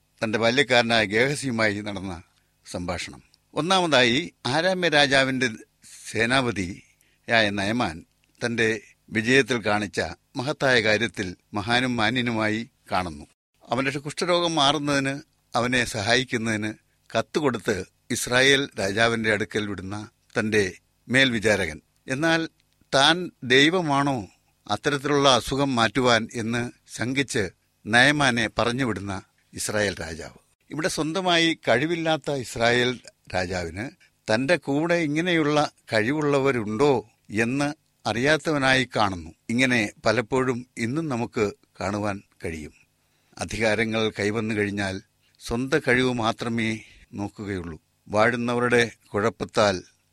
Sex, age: male, 60-79